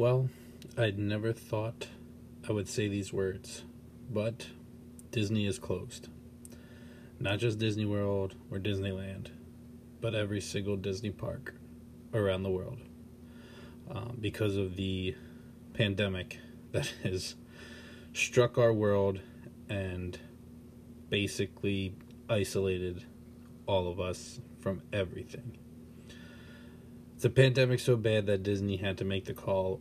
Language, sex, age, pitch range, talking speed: English, male, 20-39, 95-115 Hz, 115 wpm